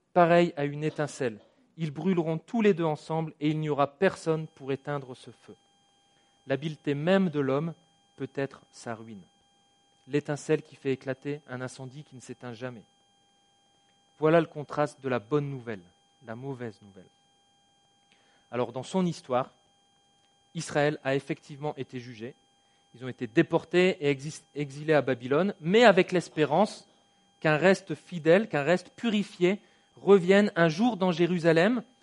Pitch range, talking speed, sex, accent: 140-185 Hz, 145 wpm, male, French